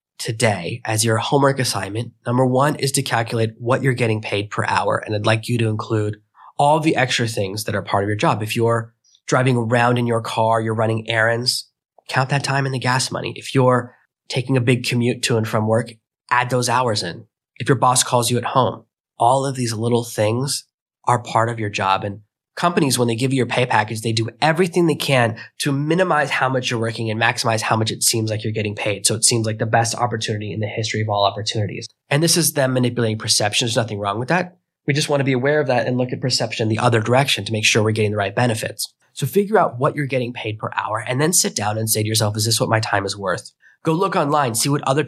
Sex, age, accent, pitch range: male, 20-39, American, 110-130 Hz